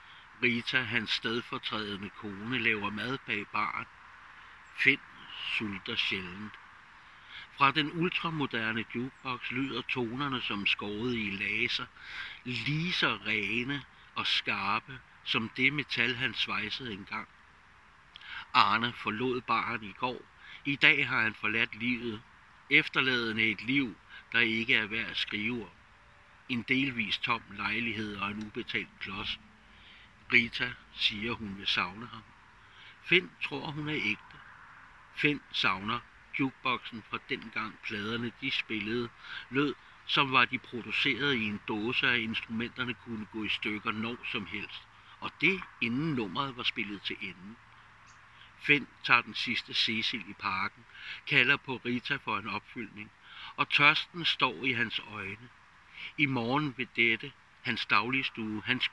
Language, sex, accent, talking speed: Danish, male, native, 135 wpm